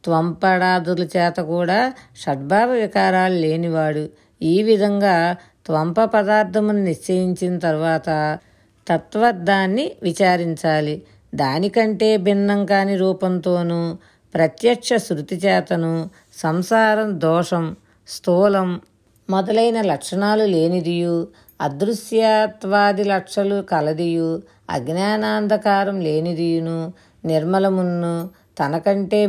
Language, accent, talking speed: Telugu, native, 70 wpm